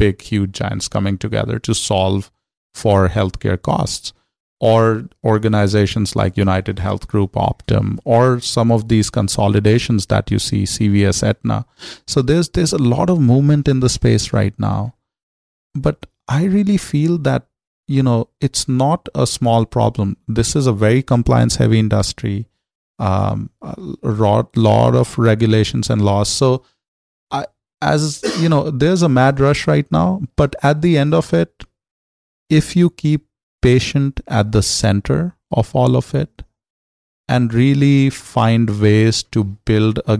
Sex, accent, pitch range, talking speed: male, Indian, 105-130 Hz, 150 wpm